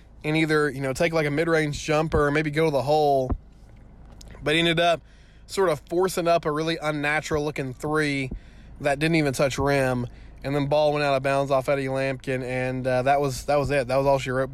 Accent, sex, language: American, male, English